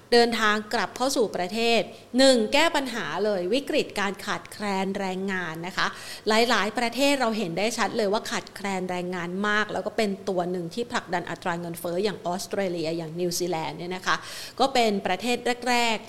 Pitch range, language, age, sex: 190-235 Hz, Thai, 30-49, female